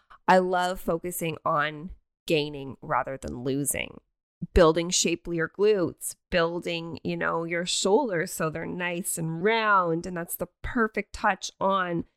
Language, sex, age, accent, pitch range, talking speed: English, female, 20-39, American, 155-180 Hz, 135 wpm